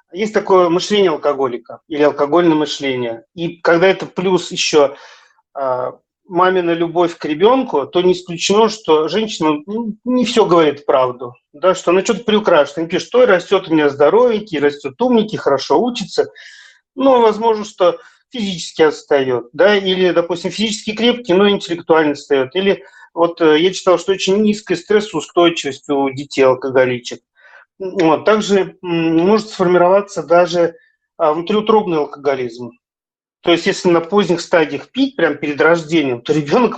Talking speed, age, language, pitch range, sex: 140 wpm, 40-59, Russian, 150-200 Hz, male